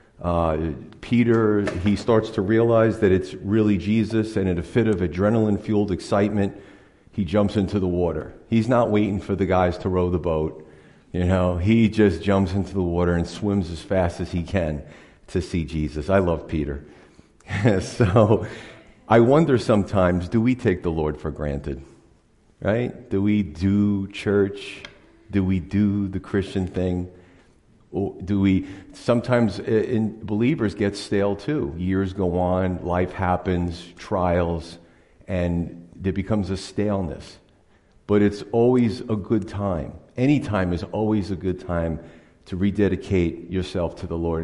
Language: English